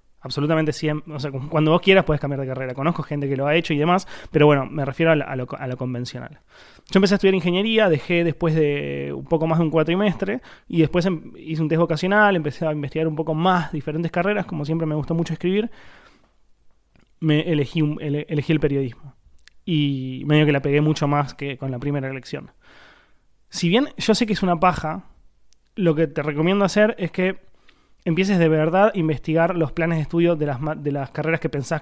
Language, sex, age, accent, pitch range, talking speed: Spanish, male, 20-39, Argentinian, 150-180 Hz, 220 wpm